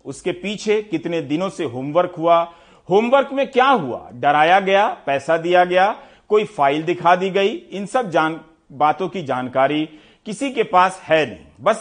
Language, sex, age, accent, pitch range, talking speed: Hindi, male, 50-69, native, 145-190 Hz, 170 wpm